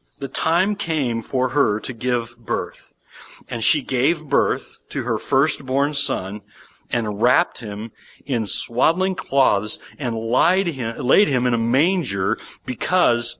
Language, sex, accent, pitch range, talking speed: English, male, American, 100-125 Hz, 130 wpm